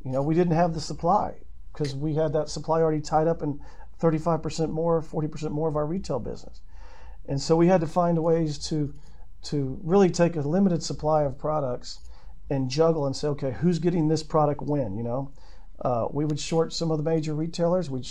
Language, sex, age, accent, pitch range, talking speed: English, male, 50-69, American, 135-160 Hz, 205 wpm